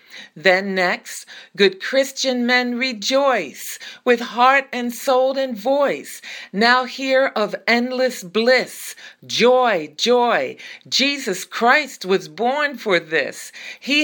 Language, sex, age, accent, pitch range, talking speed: English, female, 40-59, American, 195-260 Hz, 110 wpm